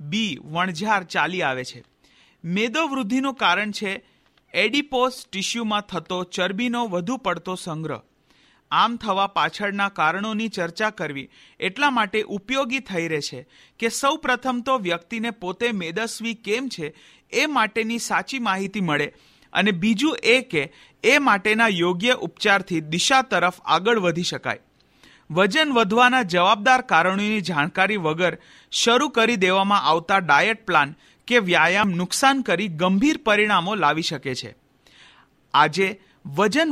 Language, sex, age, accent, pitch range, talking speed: Hindi, male, 40-59, native, 170-230 Hz, 95 wpm